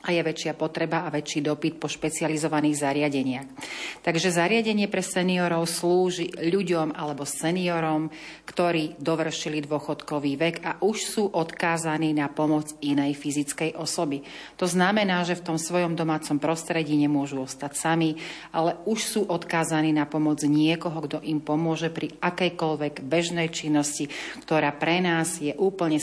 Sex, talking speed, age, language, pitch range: female, 140 wpm, 40-59, Slovak, 150-170 Hz